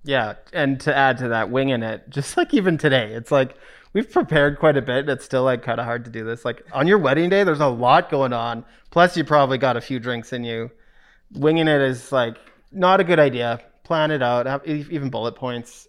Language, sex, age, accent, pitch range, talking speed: English, male, 30-49, American, 120-150 Hz, 240 wpm